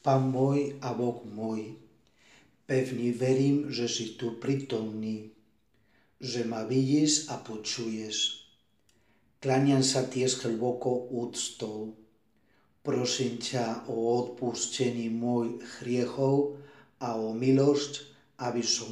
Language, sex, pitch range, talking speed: Czech, male, 115-130 Hz, 90 wpm